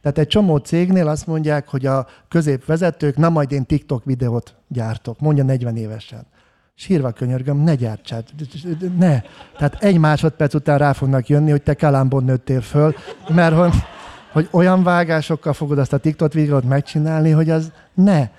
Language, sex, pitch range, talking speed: Hungarian, male, 130-155 Hz, 160 wpm